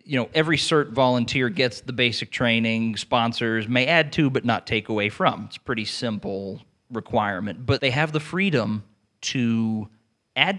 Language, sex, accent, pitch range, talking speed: English, male, American, 110-135 Hz, 170 wpm